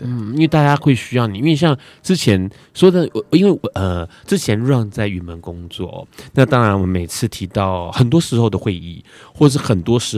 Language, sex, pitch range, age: Chinese, male, 95-130 Hz, 20-39